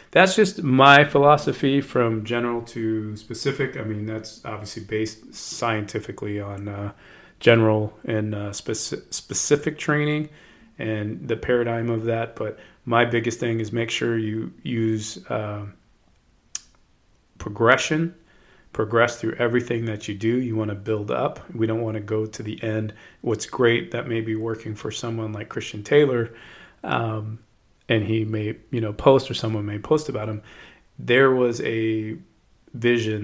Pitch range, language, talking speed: 110-120 Hz, English, 155 wpm